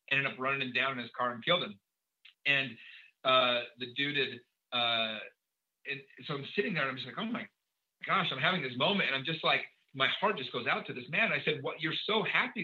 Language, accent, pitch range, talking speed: English, American, 130-175 Hz, 245 wpm